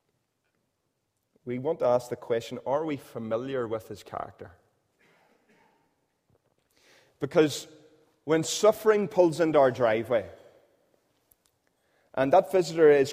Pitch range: 135-180 Hz